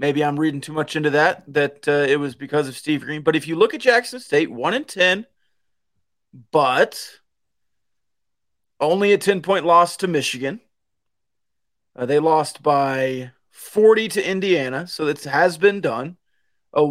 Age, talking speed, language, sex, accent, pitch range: 30-49, 155 wpm, English, male, American, 140-190 Hz